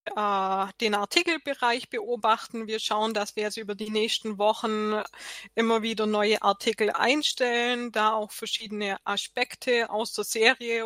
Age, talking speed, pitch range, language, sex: 20-39, 135 wpm, 215-250 Hz, German, female